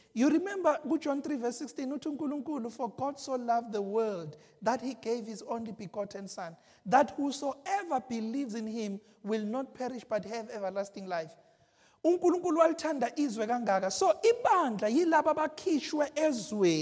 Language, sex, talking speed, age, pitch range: English, male, 150 wpm, 40-59, 235-335 Hz